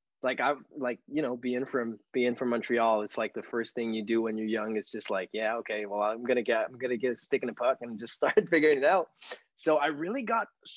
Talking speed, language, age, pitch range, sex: 260 wpm, English, 20-39, 120-165 Hz, male